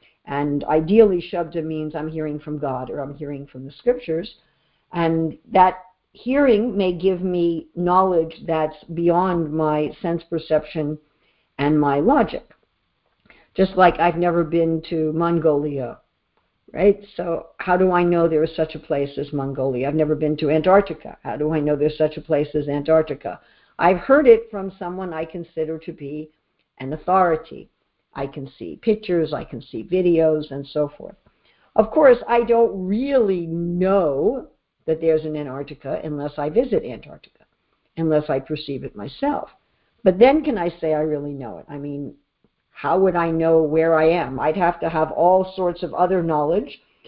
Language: English